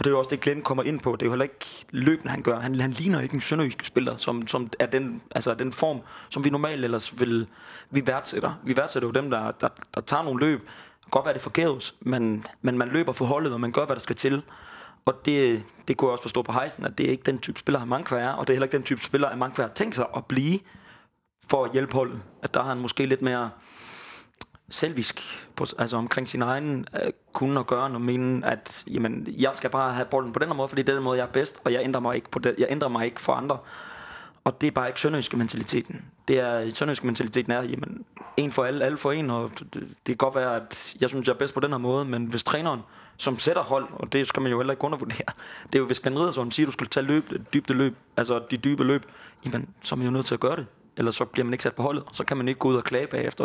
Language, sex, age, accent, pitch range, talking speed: Danish, male, 30-49, native, 125-140 Hz, 285 wpm